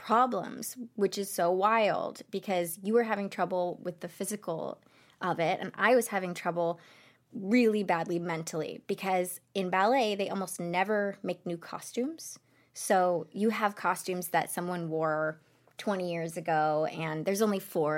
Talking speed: 155 wpm